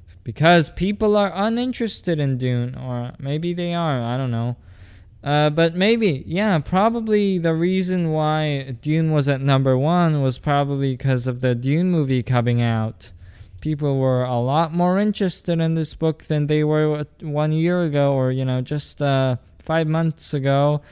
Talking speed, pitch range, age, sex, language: 165 wpm, 130-185 Hz, 20-39, male, English